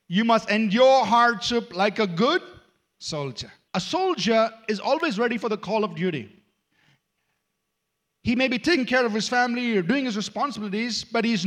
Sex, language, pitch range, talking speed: male, English, 175-240 Hz, 165 wpm